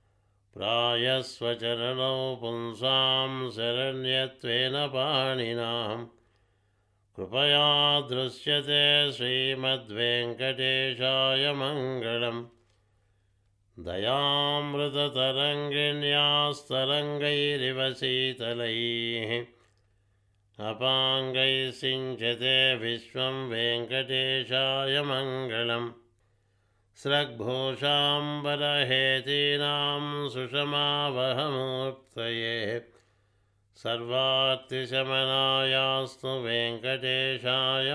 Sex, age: male, 60-79